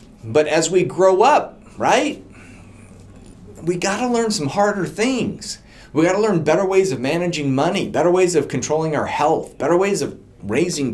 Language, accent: English, American